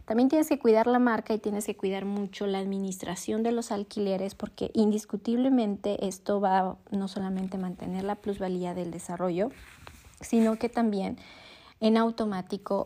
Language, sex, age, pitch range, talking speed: Spanish, female, 30-49, 190-220 Hz, 155 wpm